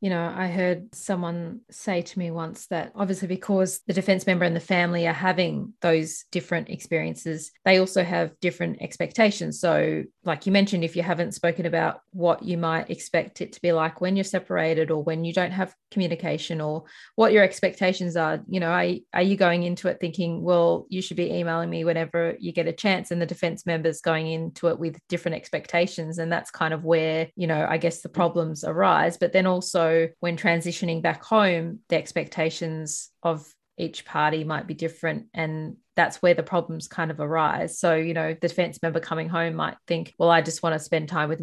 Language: English